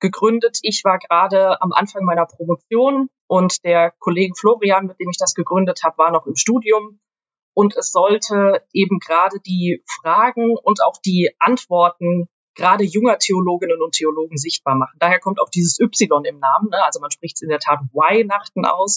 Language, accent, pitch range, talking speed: German, German, 170-205 Hz, 180 wpm